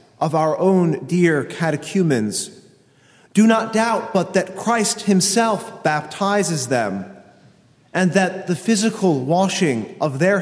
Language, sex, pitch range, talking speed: English, male, 155-200 Hz, 120 wpm